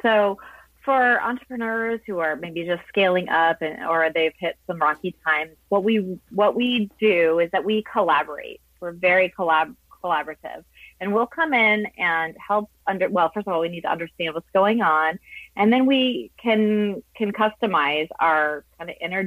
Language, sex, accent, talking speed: English, female, American, 180 wpm